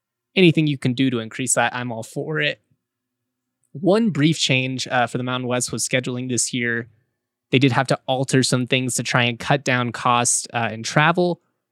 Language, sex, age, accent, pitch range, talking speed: English, male, 20-39, American, 120-140 Hz, 200 wpm